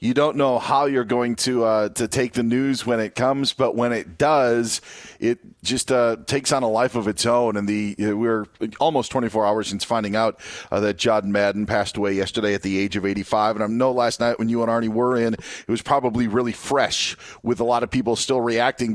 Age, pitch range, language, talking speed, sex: 40-59, 115-135 Hz, English, 240 wpm, male